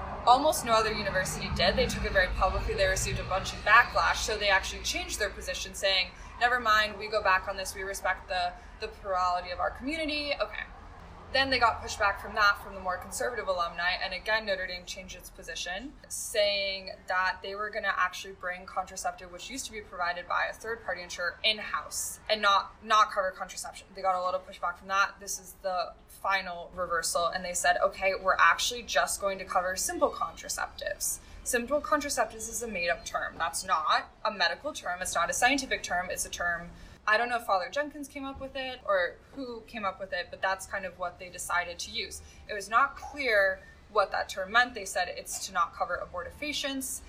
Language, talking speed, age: English, 210 wpm, 20-39